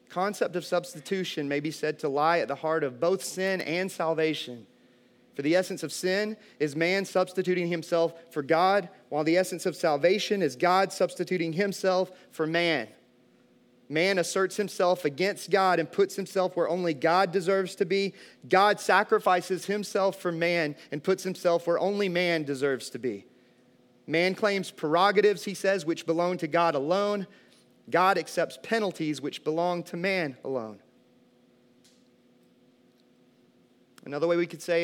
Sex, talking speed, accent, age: male, 155 wpm, American, 30-49